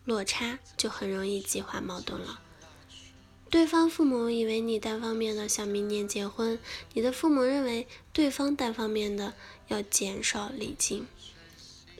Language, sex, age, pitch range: Chinese, female, 10-29, 195-250 Hz